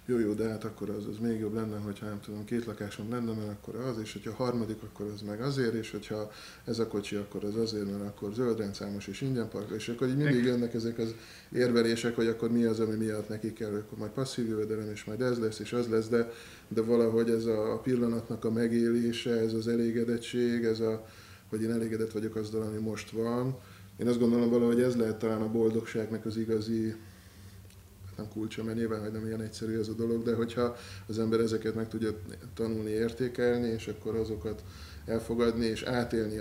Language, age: Hungarian, 20-39